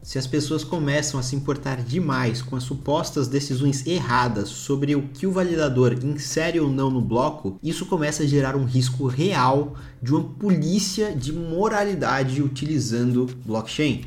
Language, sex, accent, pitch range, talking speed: Portuguese, male, Brazilian, 130-160 Hz, 160 wpm